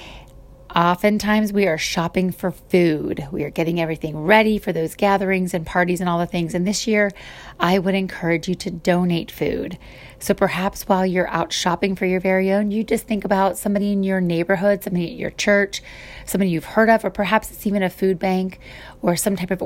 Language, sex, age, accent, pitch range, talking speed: English, female, 30-49, American, 160-195 Hz, 205 wpm